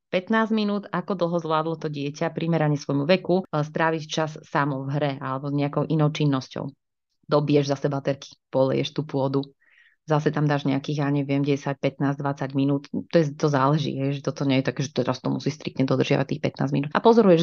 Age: 30-49